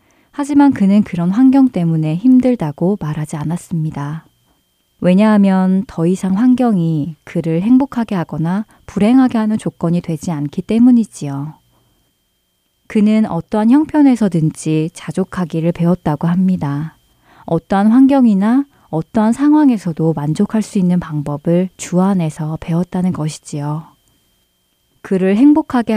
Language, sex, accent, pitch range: Korean, female, native, 155-210 Hz